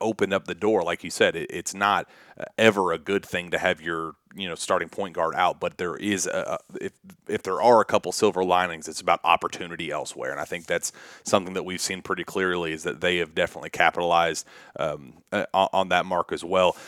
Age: 30-49